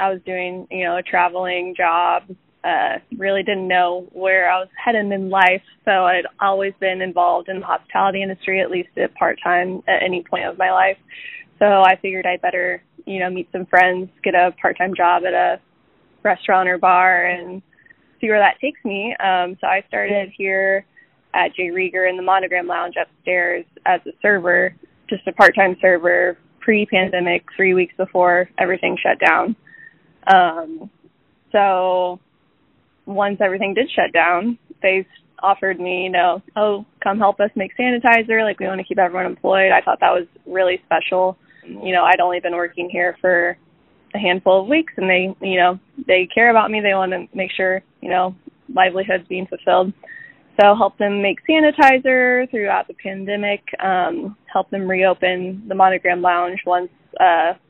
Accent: American